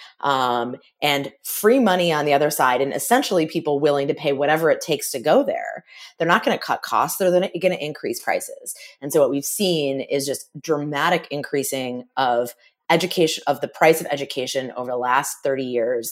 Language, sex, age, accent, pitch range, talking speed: English, female, 30-49, American, 140-185 Hz, 195 wpm